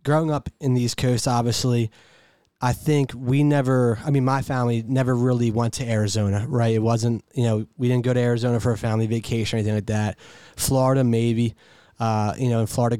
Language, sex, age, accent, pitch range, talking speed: English, male, 20-39, American, 110-130 Hz, 210 wpm